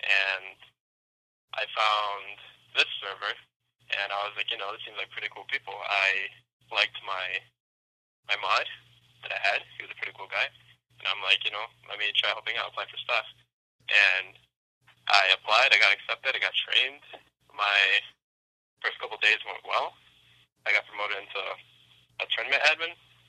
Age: 20-39